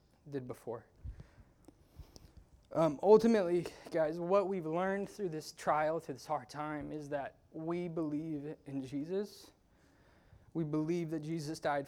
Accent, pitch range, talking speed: American, 140-170 Hz, 130 wpm